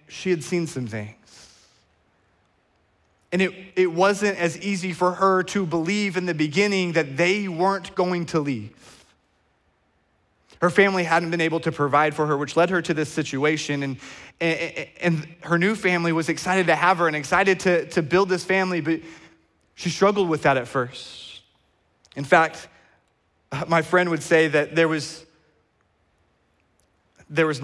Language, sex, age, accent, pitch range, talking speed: English, male, 30-49, American, 145-200 Hz, 160 wpm